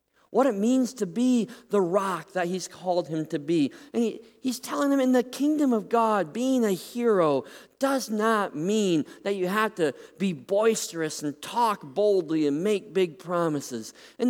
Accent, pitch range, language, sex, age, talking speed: American, 150-220 Hz, English, male, 40-59, 175 wpm